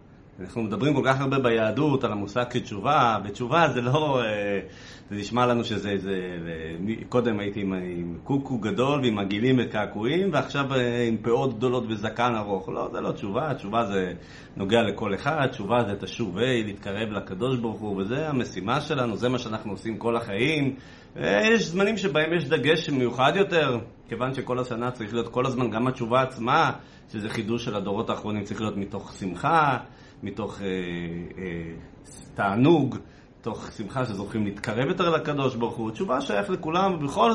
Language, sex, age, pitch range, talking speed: Hebrew, male, 30-49, 105-140 Hz, 160 wpm